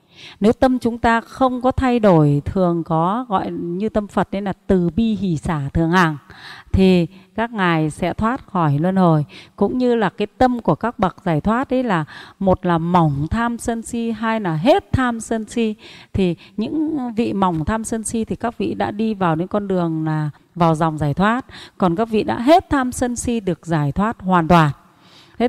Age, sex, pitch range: 30-49, female, 175-230 Hz